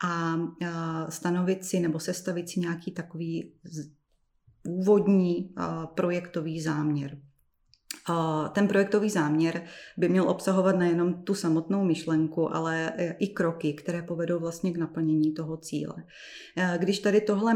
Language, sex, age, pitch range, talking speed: Czech, female, 30-49, 165-185 Hz, 115 wpm